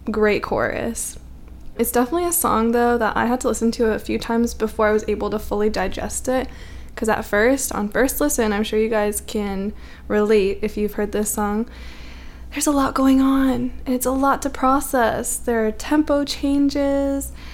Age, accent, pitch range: 10-29, American, 210-250 Hz